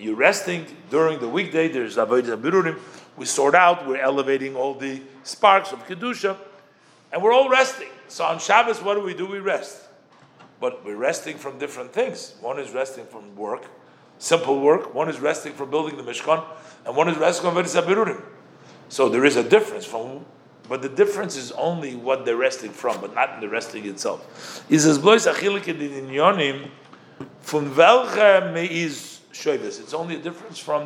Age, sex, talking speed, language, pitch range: 50-69, male, 175 wpm, English, 150-205 Hz